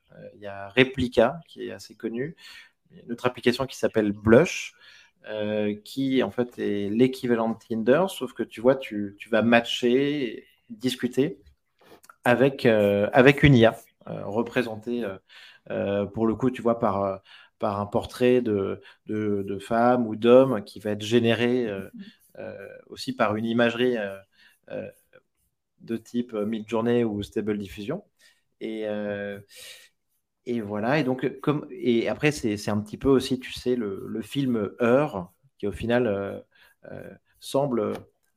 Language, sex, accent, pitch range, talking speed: French, male, French, 105-125 Hz, 155 wpm